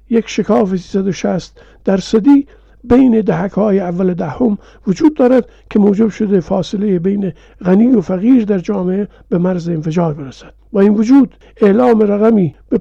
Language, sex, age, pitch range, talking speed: Persian, male, 50-69, 190-225 Hz, 145 wpm